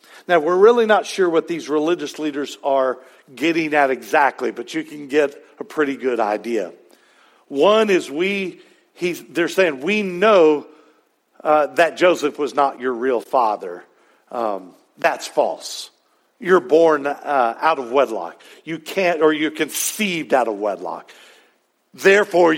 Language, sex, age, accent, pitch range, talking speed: English, male, 50-69, American, 135-185 Hz, 145 wpm